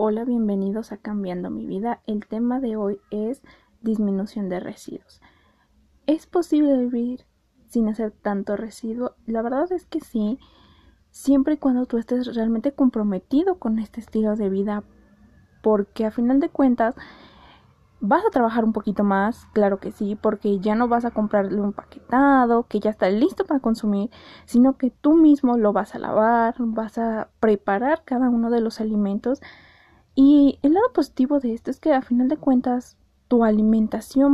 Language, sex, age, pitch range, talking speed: Spanish, female, 20-39, 210-260 Hz, 170 wpm